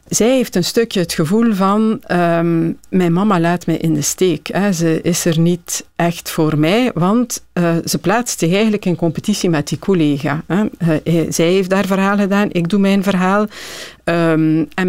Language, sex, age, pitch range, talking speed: Dutch, female, 50-69, 165-200 Hz, 185 wpm